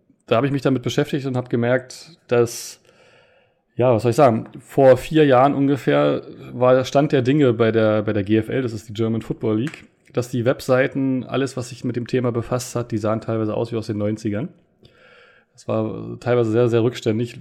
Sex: male